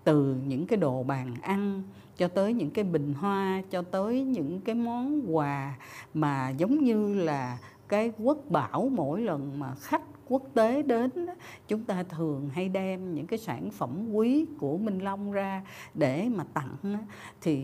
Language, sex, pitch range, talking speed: Vietnamese, female, 145-220 Hz, 170 wpm